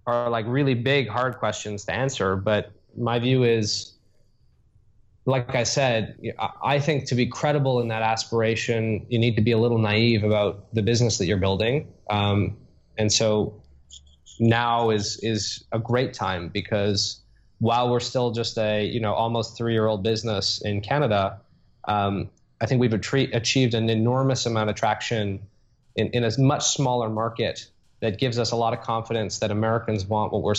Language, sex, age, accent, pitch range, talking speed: English, male, 20-39, American, 105-125 Hz, 170 wpm